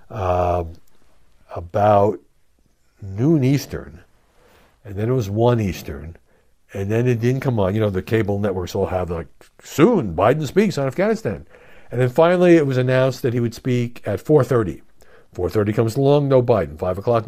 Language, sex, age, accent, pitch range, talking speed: English, male, 60-79, American, 95-120 Hz, 165 wpm